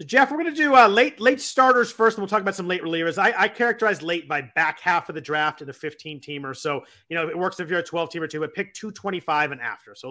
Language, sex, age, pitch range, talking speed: English, male, 30-49, 135-190 Hz, 295 wpm